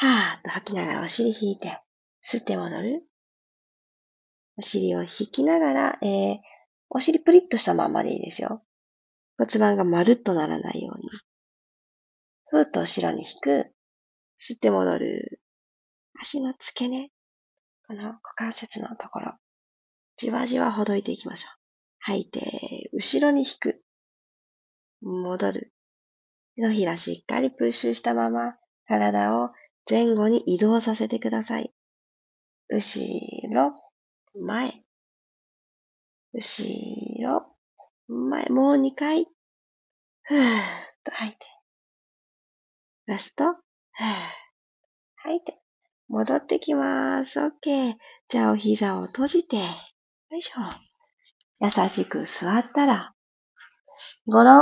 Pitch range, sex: 180-275 Hz, female